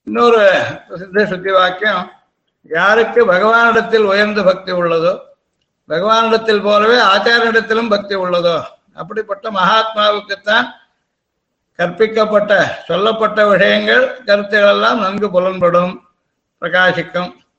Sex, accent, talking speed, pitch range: male, native, 80 wpm, 185-220 Hz